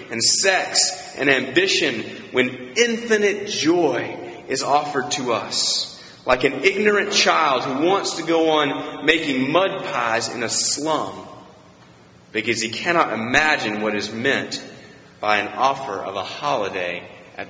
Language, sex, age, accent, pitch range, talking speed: English, male, 30-49, American, 105-155 Hz, 135 wpm